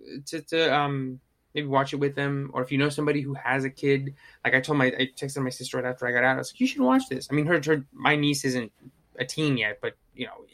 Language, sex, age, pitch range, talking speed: English, male, 20-39, 125-150 Hz, 285 wpm